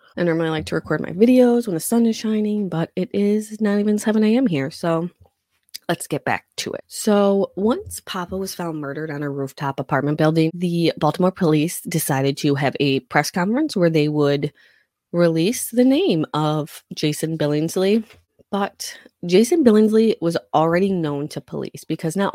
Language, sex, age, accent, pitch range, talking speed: English, female, 20-39, American, 150-190 Hz, 175 wpm